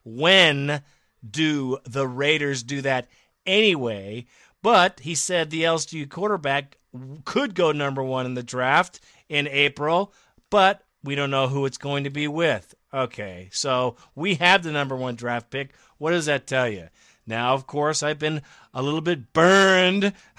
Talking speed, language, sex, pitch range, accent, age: 160 wpm, English, male, 135-180 Hz, American, 40-59